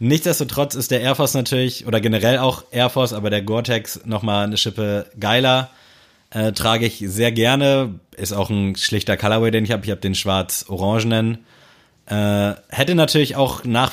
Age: 20-39